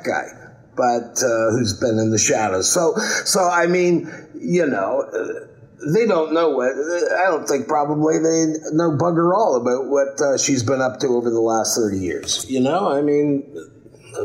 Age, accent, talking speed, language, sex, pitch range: 50-69, American, 175 wpm, English, male, 120-145 Hz